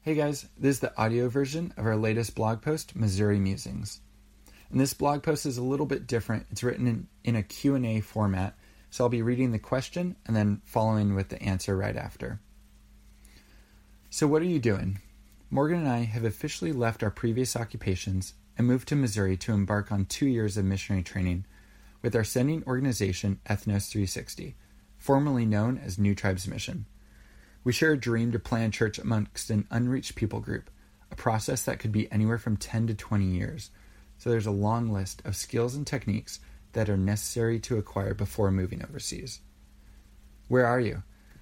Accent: American